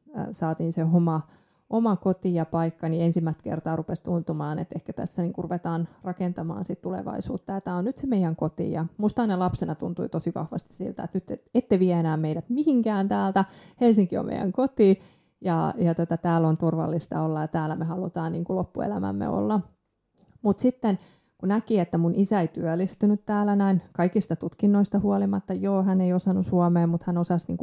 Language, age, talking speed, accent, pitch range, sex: Finnish, 30-49, 175 wpm, native, 165-190 Hz, female